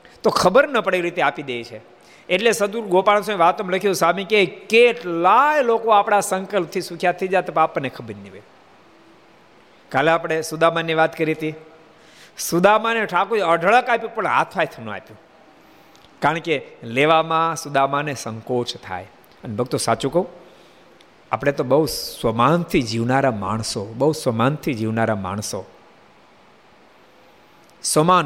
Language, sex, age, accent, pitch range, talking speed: Gujarati, male, 50-69, native, 125-185 Hz, 100 wpm